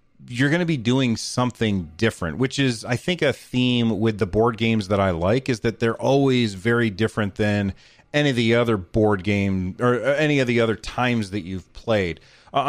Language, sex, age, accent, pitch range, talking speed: English, male, 30-49, American, 110-130 Hz, 205 wpm